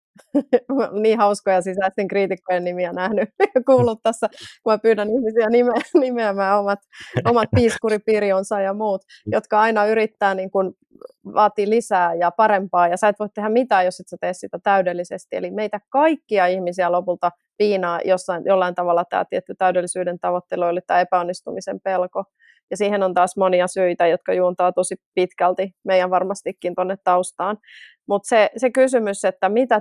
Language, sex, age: Finnish, female, 30-49